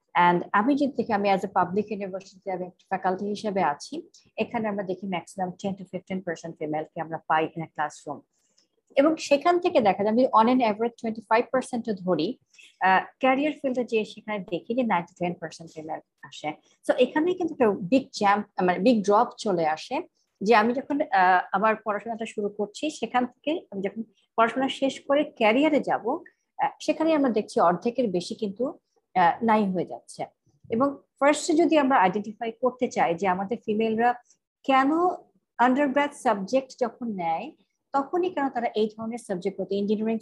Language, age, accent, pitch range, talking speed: English, 50-69, Indian, 195-275 Hz, 105 wpm